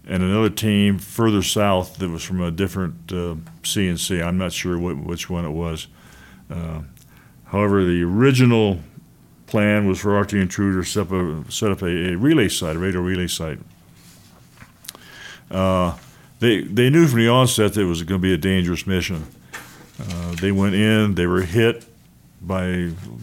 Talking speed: 175 wpm